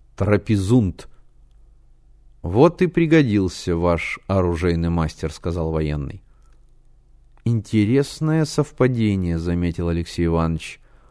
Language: Russian